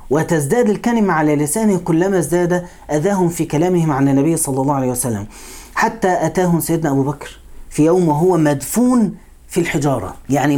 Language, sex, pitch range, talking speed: English, male, 145-180 Hz, 155 wpm